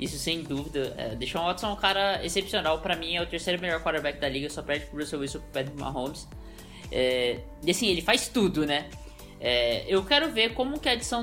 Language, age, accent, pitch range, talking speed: Portuguese, 10-29, Brazilian, 160-220 Hz, 225 wpm